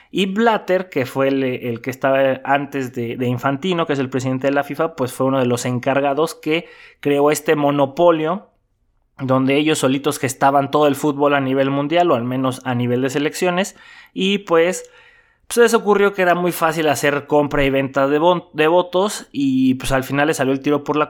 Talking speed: 210 wpm